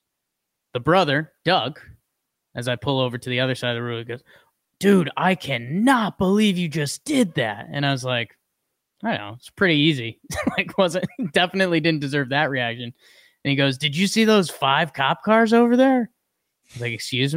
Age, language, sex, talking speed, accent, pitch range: 20-39, English, male, 190 wpm, American, 120-160 Hz